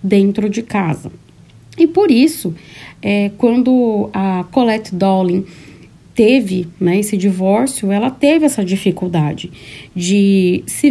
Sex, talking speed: female, 115 wpm